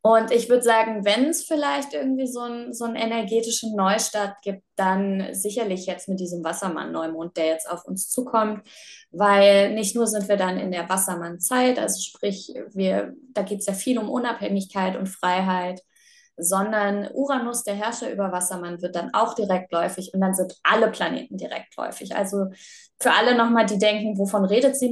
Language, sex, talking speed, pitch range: German, female, 170 wpm, 190-230 Hz